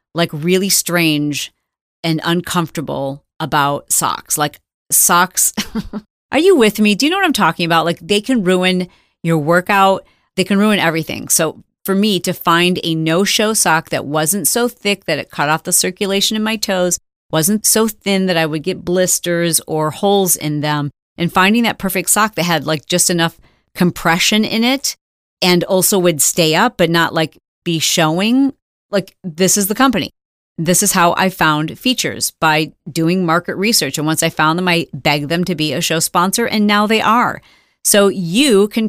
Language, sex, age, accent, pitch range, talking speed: English, female, 40-59, American, 160-200 Hz, 185 wpm